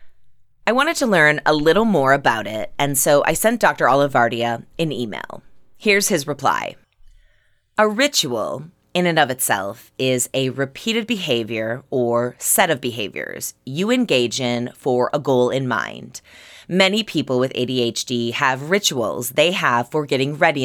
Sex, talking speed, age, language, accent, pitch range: female, 155 wpm, 20-39, English, American, 125-170 Hz